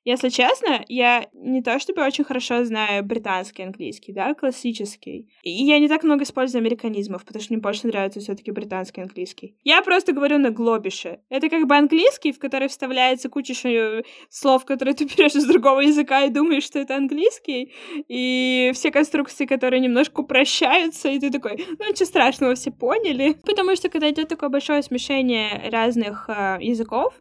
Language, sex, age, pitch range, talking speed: Russian, female, 20-39, 215-280 Hz, 170 wpm